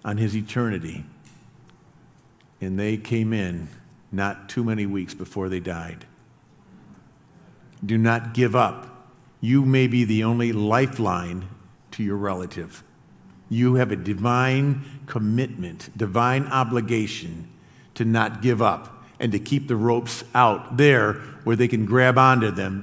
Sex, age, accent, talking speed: male, 50-69, American, 135 wpm